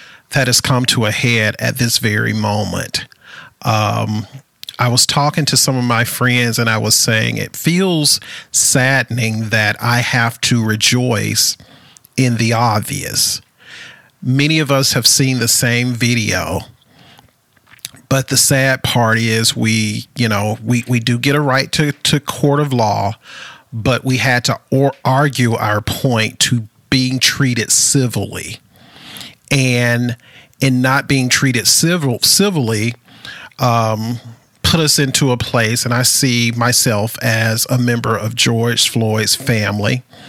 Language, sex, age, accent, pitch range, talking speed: English, male, 40-59, American, 115-135 Hz, 145 wpm